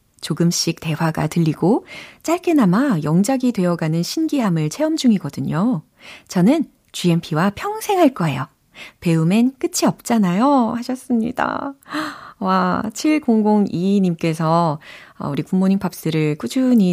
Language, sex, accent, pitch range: Korean, female, native, 155-245 Hz